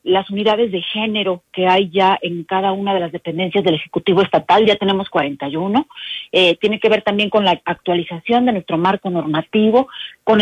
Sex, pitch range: female, 185-230 Hz